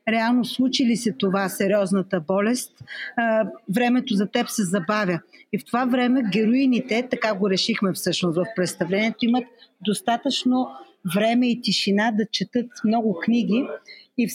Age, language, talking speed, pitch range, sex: 40-59, Bulgarian, 140 wpm, 195-235 Hz, female